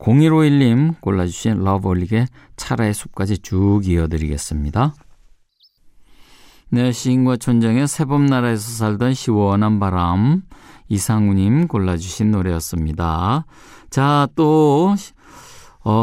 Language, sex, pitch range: Korean, male, 100-145 Hz